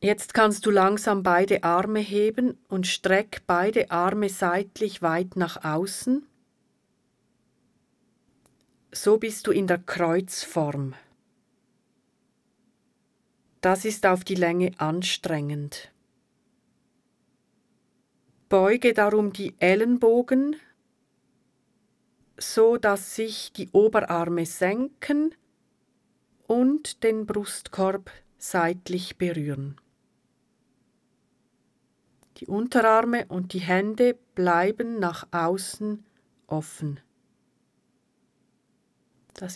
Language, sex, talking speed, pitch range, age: German, female, 80 wpm, 175-220 Hz, 40-59